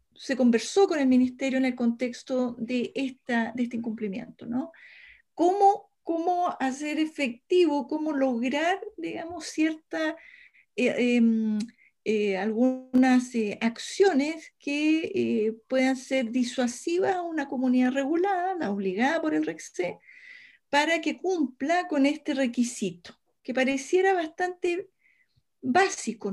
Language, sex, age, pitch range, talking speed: Spanish, female, 40-59, 240-335 Hz, 120 wpm